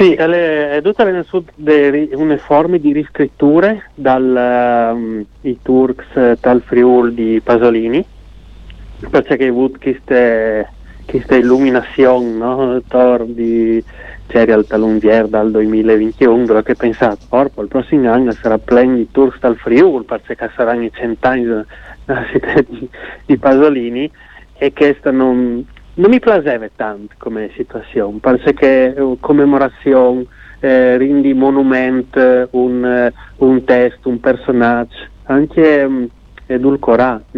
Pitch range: 115-130 Hz